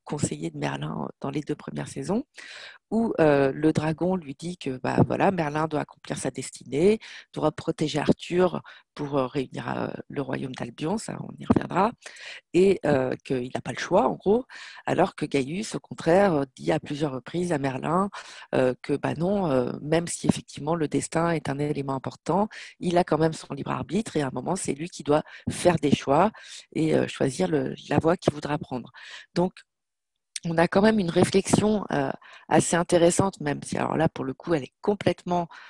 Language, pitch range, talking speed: French, 145-185 Hz, 190 wpm